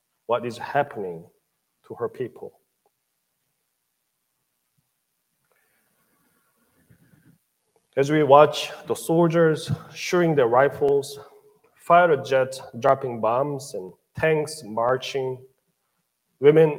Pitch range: 125-200 Hz